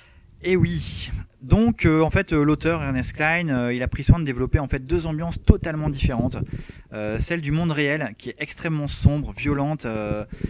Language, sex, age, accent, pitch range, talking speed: French, male, 20-39, French, 105-140 Hz, 195 wpm